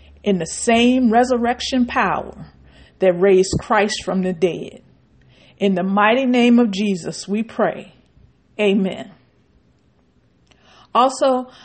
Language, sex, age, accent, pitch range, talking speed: English, female, 50-69, American, 185-215 Hz, 110 wpm